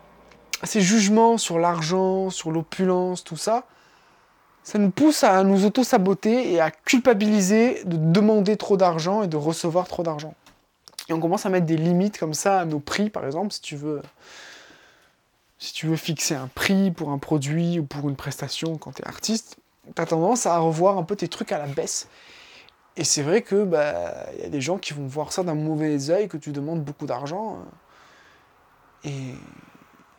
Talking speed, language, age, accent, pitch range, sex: 185 wpm, English, 20-39, French, 155-200 Hz, male